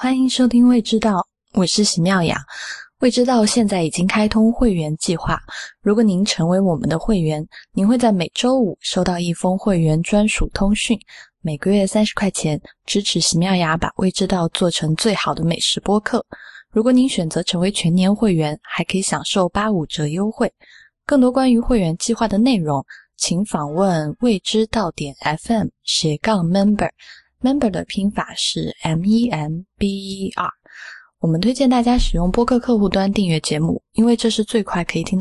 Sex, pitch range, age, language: female, 170-220 Hz, 20-39, Chinese